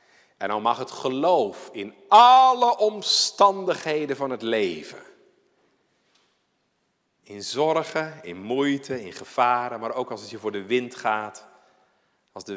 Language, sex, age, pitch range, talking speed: Dutch, male, 50-69, 100-140 Hz, 135 wpm